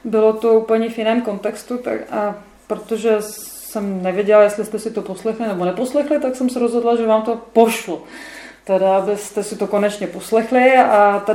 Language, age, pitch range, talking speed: Czech, 30-49, 210-260 Hz, 175 wpm